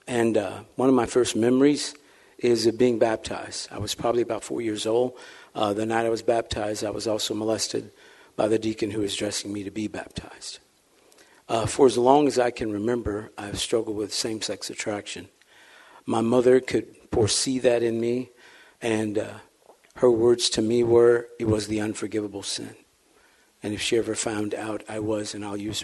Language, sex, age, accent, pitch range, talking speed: English, male, 50-69, American, 105-120 Hz, 190 wpm